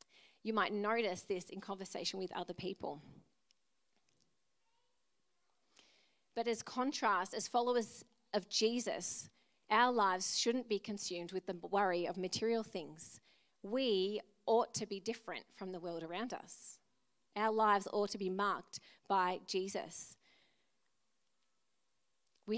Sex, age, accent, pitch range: female, 30-49, Australian, 190-230 Hz